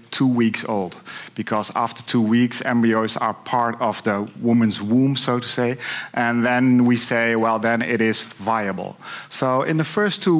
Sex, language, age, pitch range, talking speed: male, Dutch, 50-69, 115-140 Hz, 180 wpm